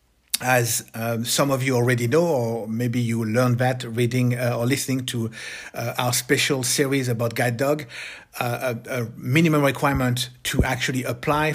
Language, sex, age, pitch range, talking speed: English, male, 50-69, 120-145 Hz, 165 wpm